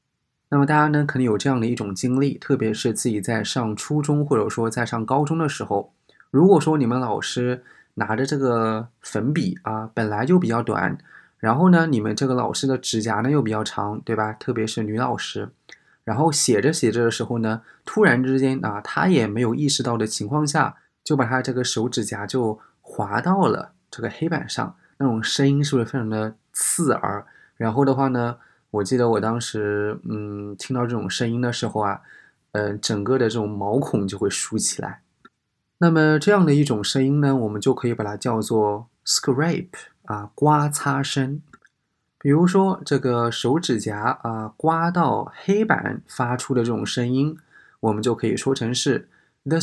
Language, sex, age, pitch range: Chinese, male, 20-39, 110-140 Hz